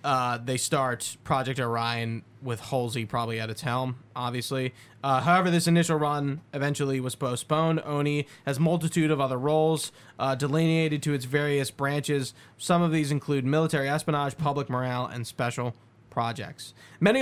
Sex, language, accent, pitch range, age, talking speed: male, English, American, 130-155 Hz, 20-39, 155 wpm